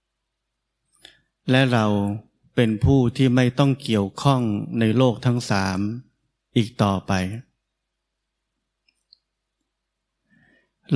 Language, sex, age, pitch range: Thai, male, 20-39, 105-125 Hz